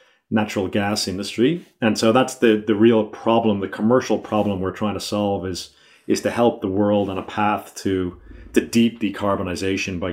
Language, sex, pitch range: English, male, 95-110 Hz